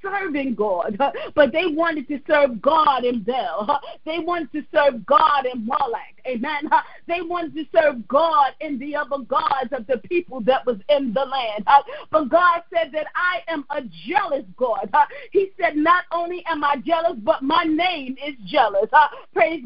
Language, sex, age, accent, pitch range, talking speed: English, female, 40-59, American, 285-350 Hz, 175 wpm